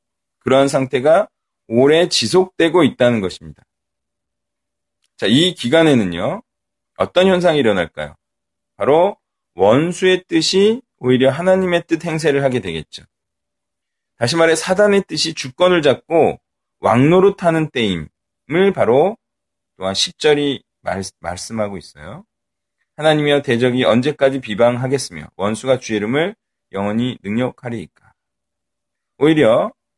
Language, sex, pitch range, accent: Korean, male, 105-170 Hz, native